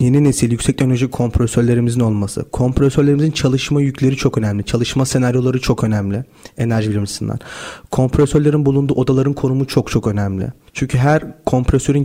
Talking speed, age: 135 wpm, 40-59